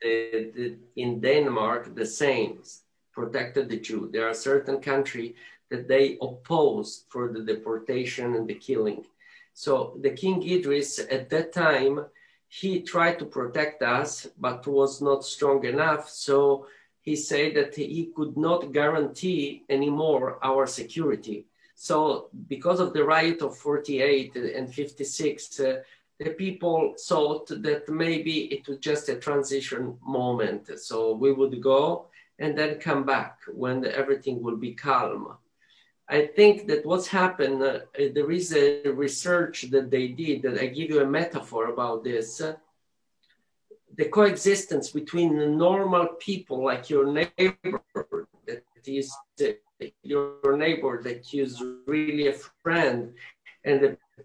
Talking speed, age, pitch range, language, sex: 140 wpm, 50-69, 135-165 Hz, English, male